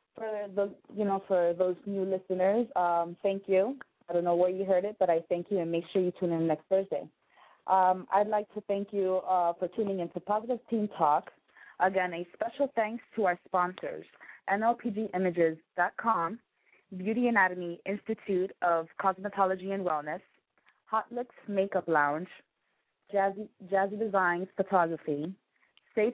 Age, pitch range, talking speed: 20-39, 175-210 Hz, 145 wpm